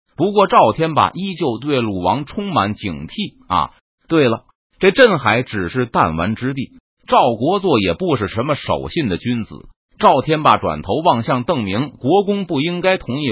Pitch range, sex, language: 110-180 Hz, male, Chinese